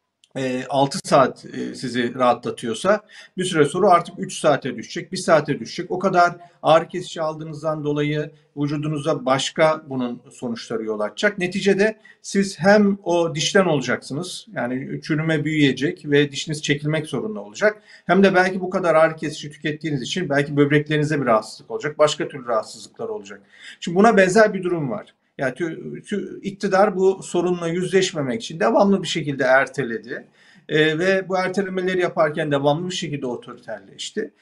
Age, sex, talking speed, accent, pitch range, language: 40-59, male, 150 wpm, native, 145-185 Hz, Turkish